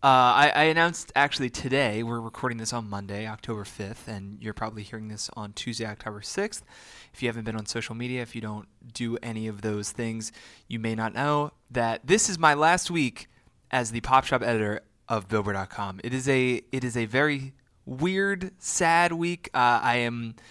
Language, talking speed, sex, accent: English, 195 wpm, male, American